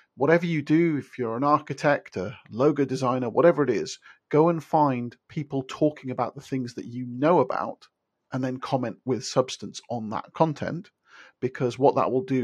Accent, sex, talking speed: British, male, 185 wpm